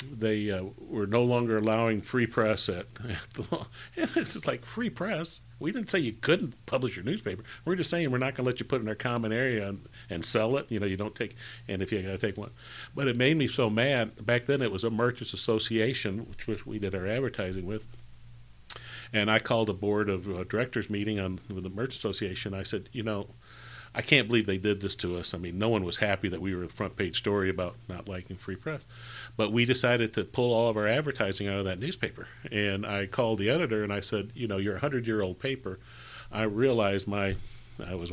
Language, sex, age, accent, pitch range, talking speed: English, male, 50-69, American, 100-120 Hz, 240 wpm